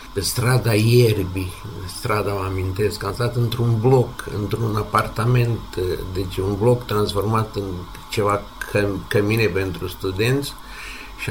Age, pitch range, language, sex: 60-79, 95-110 Hz, Romanian, male